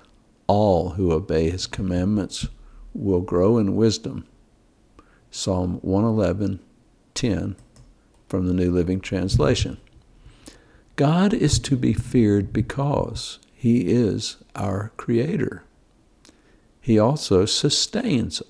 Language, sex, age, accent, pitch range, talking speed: English, male, 60-79, American, 95-125 Hz, 95 wpm